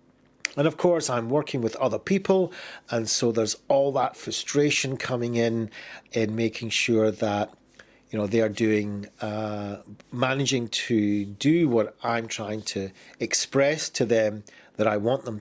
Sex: male